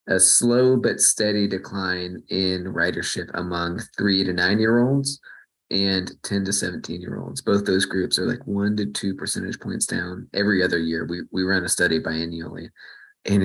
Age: 30-49